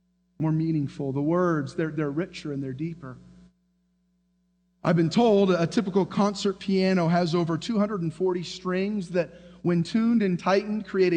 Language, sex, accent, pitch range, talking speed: English, male, American, 170-210 Hz, 145 wpm